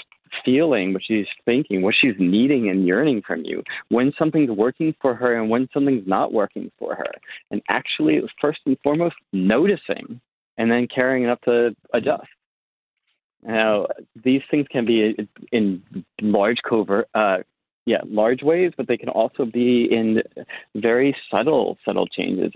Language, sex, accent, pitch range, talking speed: English, male, American, 105-125 Hz, 165 wpm